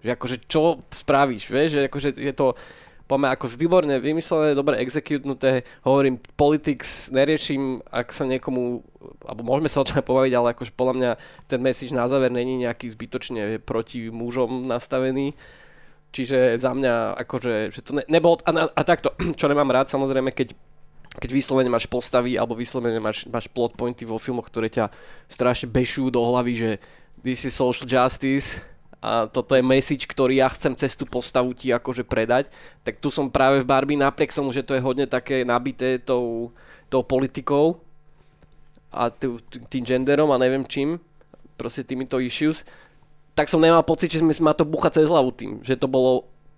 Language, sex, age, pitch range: Slovak, male, 20-39, 125-145 Hz